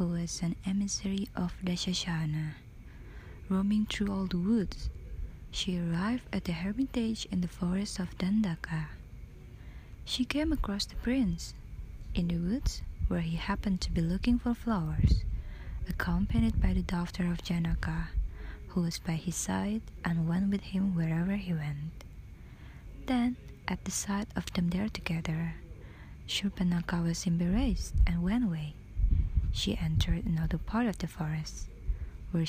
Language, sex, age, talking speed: Indonesian, female, 20-39, 145 wpm